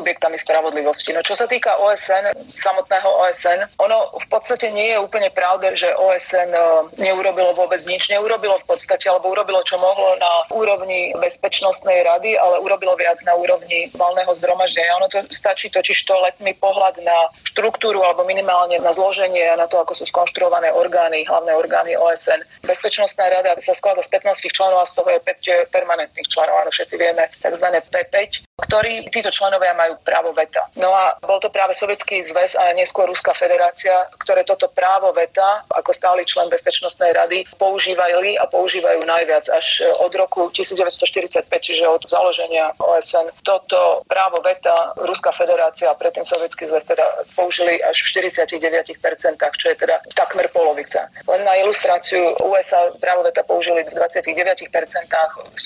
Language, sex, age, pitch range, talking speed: Slovak, female, 30-49, 170-195 Hz, 160 wpm